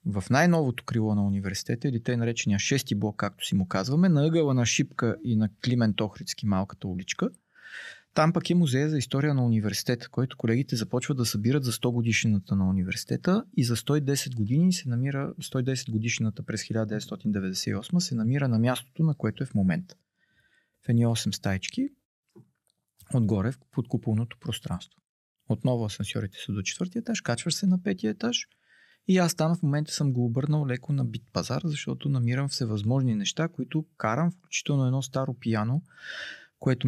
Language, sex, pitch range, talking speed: Bulgarian, male, 110-145 Hz, 165 wpm